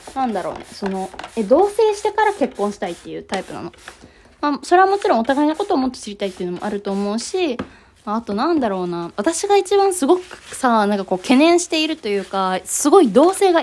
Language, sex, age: Japanese, female, 20-39